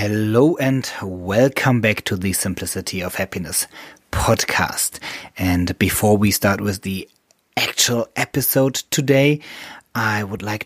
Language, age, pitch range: English, 30-49, 105-135 Hz